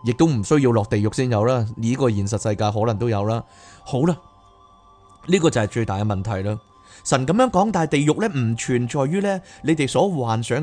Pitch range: 115-160 Hz